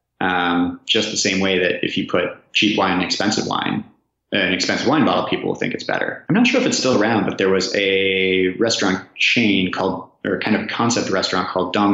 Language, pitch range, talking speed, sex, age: English, 95-130 Hz, 220 wpm, male, 30-49